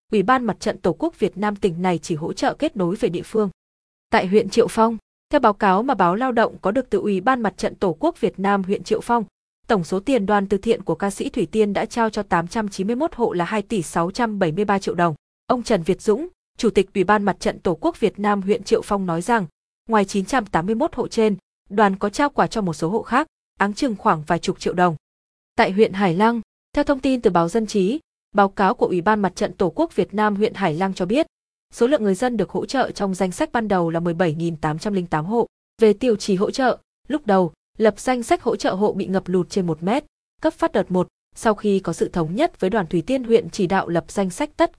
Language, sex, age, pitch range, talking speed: Vietnamese, female, 20-39, 185-230 Hz, 250 wpm